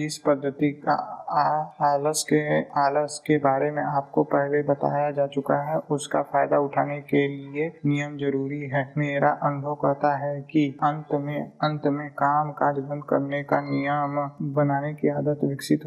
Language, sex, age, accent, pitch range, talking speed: Hindi, male, 20-39, native, 140-150 Hz, 165 wpm